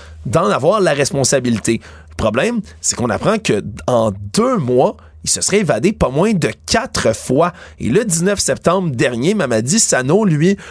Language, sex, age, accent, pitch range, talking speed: French, male, 30-49, Canadian, 125-195 Hz, 170 wpm